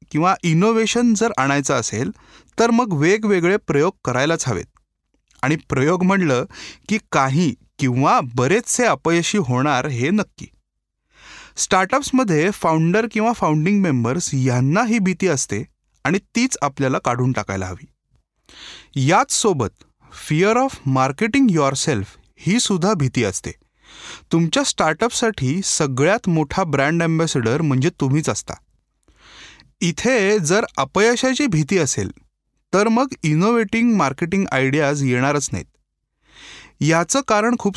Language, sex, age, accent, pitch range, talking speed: Marathi, male, 30-49, native, 135-205 Hz, 110 wpm